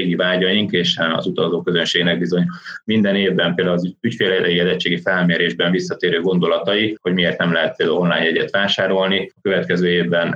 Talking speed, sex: 140 wpm, male